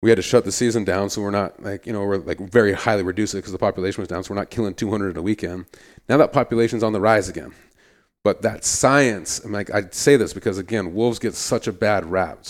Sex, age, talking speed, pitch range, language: male, 40-59, 260 wpm, 90-110 Hz, English